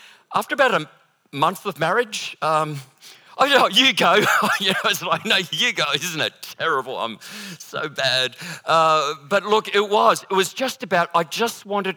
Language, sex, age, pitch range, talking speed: English, male, 40-59, 145-205 Hz, 190 wpm